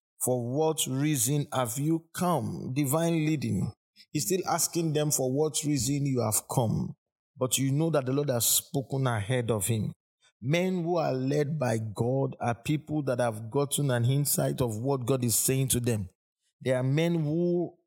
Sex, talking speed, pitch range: male, 180 wpm, 125-150 Hz